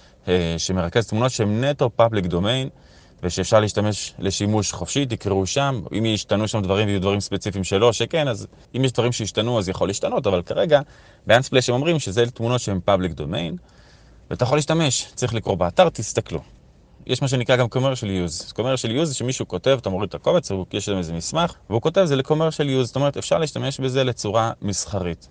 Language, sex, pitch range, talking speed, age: Hebrew, male, 95-130 Hz, 185 wpm, 20-39